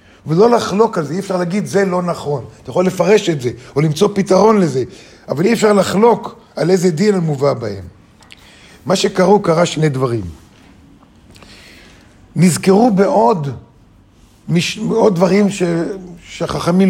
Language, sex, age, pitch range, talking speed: Hebrew, male, 50-69, 150-195 Hz, 140 wpm